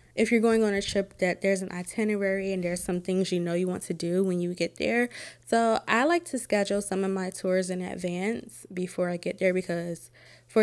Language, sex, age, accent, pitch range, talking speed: English, female, 20-39, American, 175-200 Hz, 230 wpm